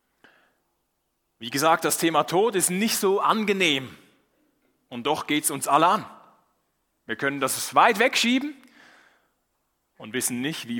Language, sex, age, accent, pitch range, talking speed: German, male, 30-49, German, 130-210 Hz, 140 wpm